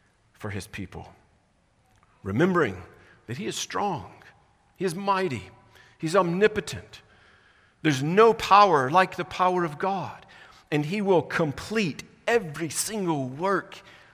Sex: male